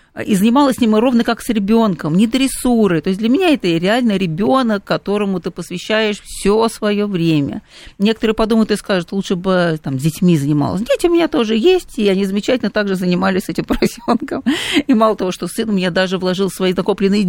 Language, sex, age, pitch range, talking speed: Russian, female, 40-59, 185-225 Hz, 195 wpm